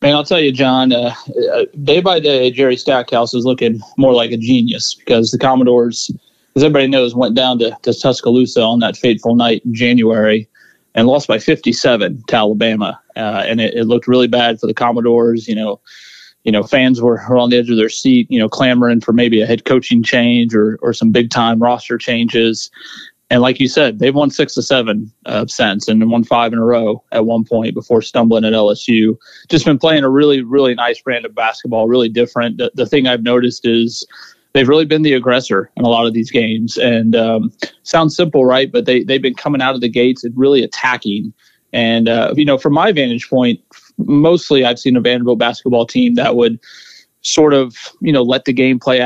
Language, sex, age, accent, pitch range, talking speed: English, male, 30-49, American, 115-130 Hz, 210 wpm